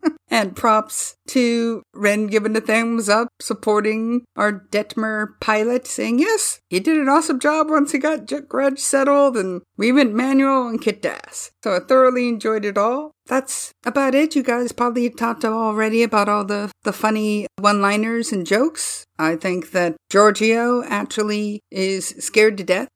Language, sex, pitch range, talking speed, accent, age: English, female, 180-240 Hz, 165 wpm, American, 50-69